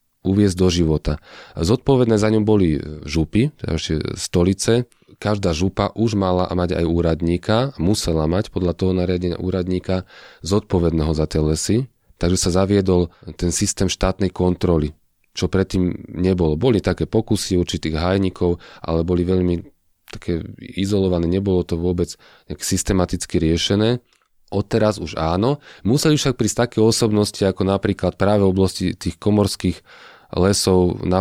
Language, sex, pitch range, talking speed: Slovak, male, 90-105 Hz, 135 wpm